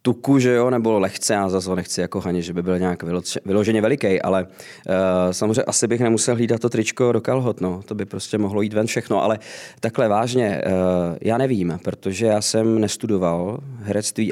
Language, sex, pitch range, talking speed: Czech, male, 100-115 Hz, 185 wpm